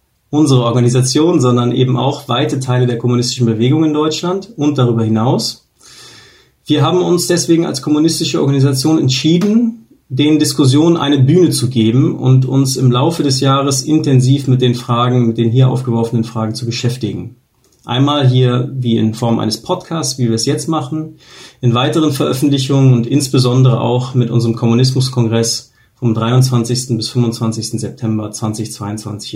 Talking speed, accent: 150 wpm, German